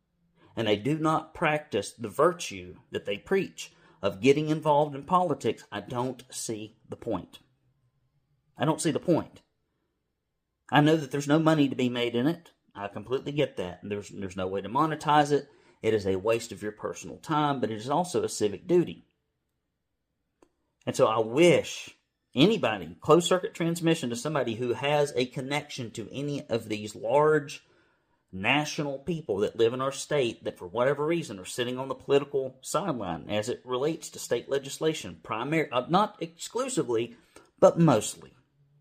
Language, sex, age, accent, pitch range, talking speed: English, male, 40-59, American, 120-160 Hz, 170 wpm